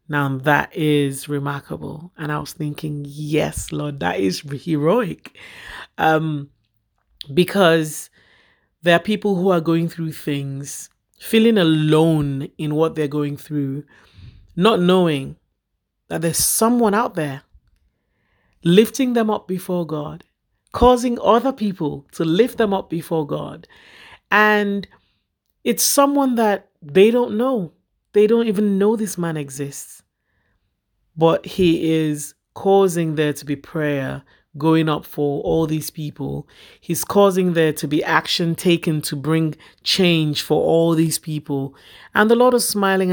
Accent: Nigerian